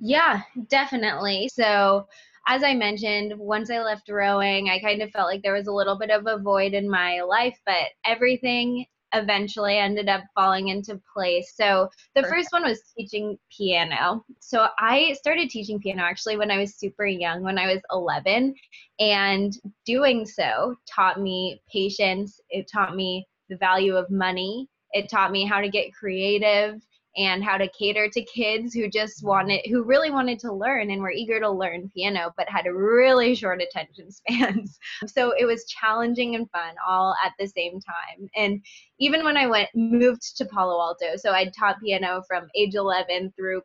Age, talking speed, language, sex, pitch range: 20-39, 180 wpm, English, female, 190-230 Hz